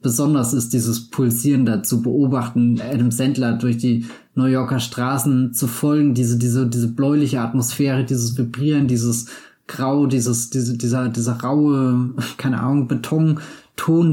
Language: German